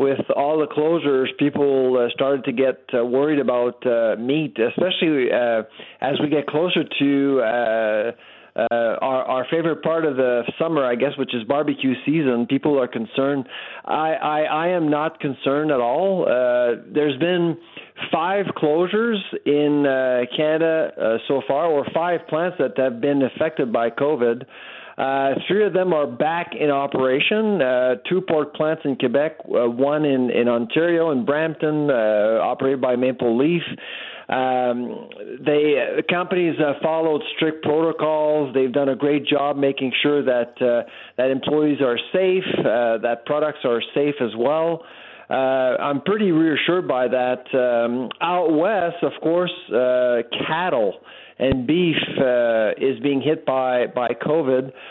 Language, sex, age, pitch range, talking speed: English, male, 50-69, 130-155 Hz, 155 wpm